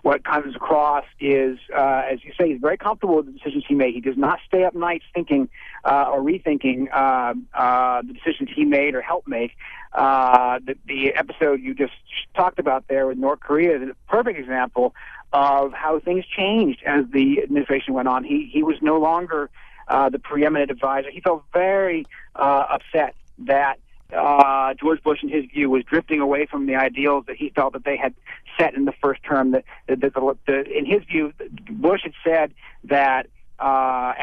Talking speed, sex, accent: 195 wpm, male, American